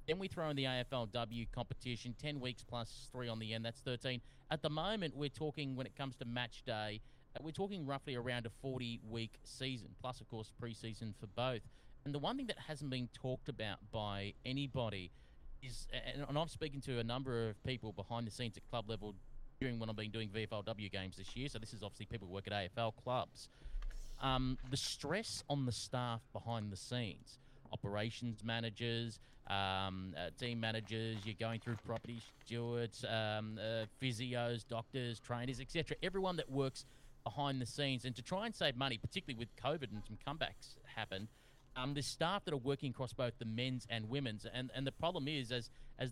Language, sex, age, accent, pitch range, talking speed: English, male, 30-49, Australian, 115-135 Hz, 195 wpm